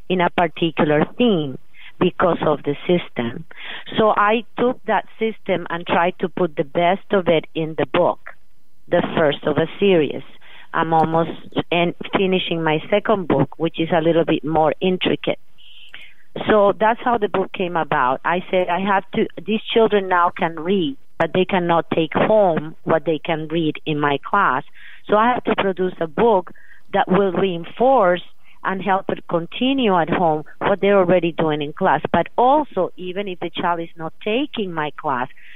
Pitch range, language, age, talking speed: 160-195 Hz, English, 40-59, 175 wpm